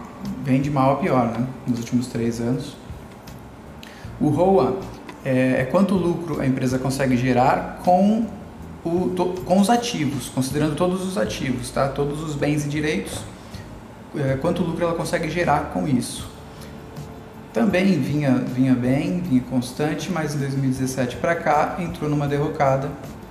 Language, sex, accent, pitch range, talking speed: Portuguese, male, Brazilian, 125-170 Hz, 140 wpm